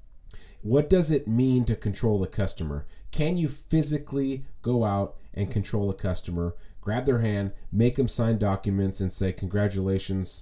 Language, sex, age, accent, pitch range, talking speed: English, male, 30-49, American, 95-115 Hz, 155 wpm